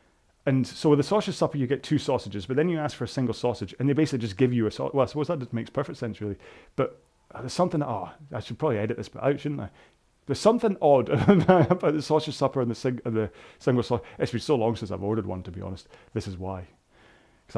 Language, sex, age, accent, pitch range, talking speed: English, male, 30-49, British, 105-140 Hz, 260 wpm